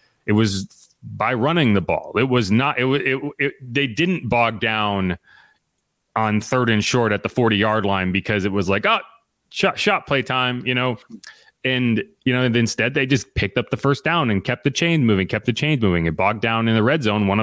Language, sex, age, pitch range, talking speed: English, male, 30-49, 100-125 Hz, 220 wpm